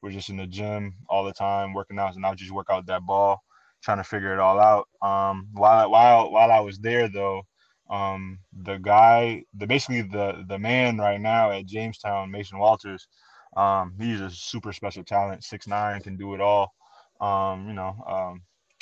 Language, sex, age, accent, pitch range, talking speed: English, male, 20-39, American, 95-110 Hz, 195 wpm